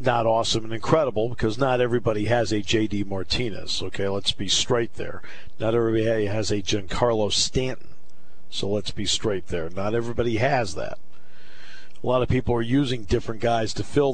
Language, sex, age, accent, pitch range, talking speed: English, male, 50-69, American, 85-120 Hz, 175 wpm